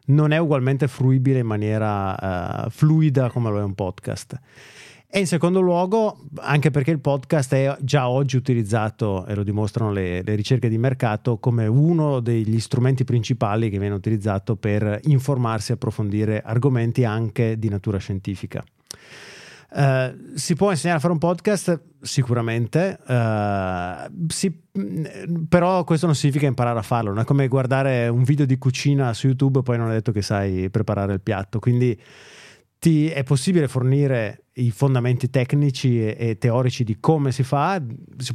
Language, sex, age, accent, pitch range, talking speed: Italian, male, 30-49, native, 110-140 Hz, 165 wpm